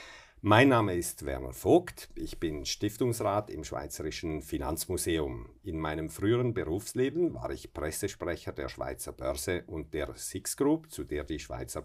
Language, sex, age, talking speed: German, male, 50-69, 145 wpm